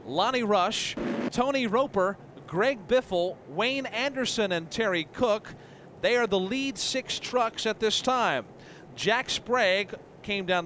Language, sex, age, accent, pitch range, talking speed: English, male, 40-59, American, 170-210 Hz, 135 wpm